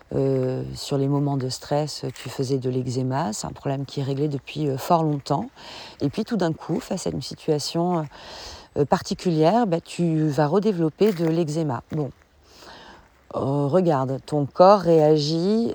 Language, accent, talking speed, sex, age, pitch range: French, French, 170 wpm, female, 40-59, 145-180 Hz